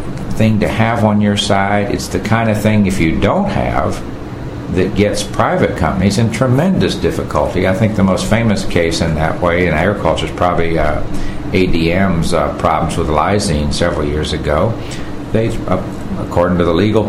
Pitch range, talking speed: 90-110 Hz, 175 wpm